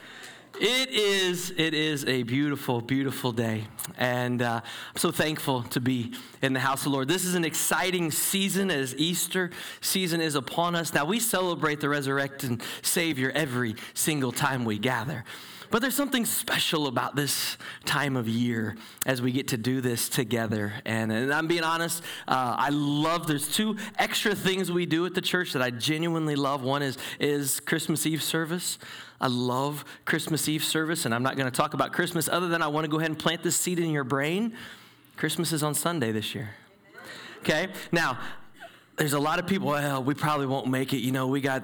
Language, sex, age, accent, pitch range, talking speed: English, male, 20-39, American, 130-175 Hz, 195 wpm